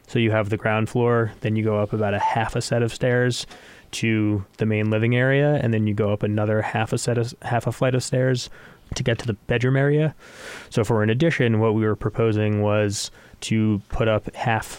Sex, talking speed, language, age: male, 225 wpm, English, 20-39